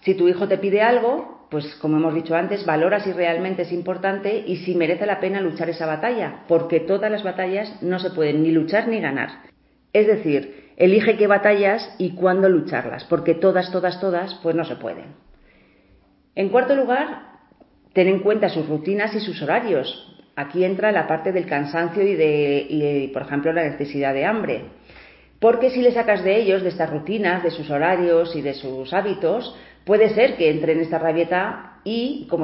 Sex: female